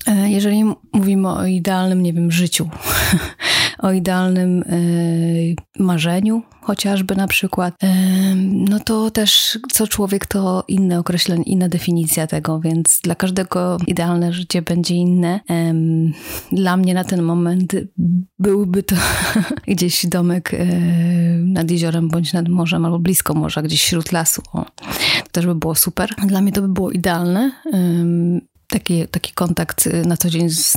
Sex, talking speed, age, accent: female, 135 wpm, 30-49, native